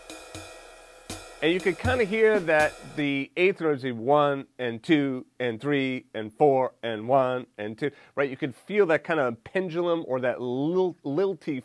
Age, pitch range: 30-49, 115-155 Hz